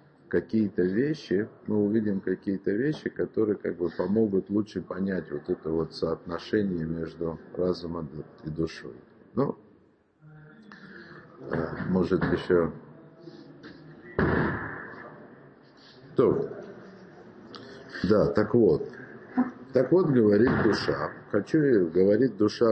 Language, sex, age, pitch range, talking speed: Russian, male, 50-69, 95-130 Hz, 90 wpm